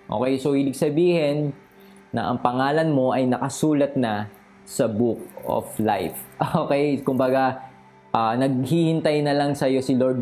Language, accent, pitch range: Filipino, native, 125-160 Hz